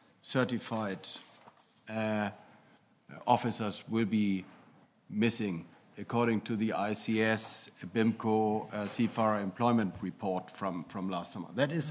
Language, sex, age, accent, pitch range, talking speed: English, male, 50-69, German, 110-135 Hz, 105 wpm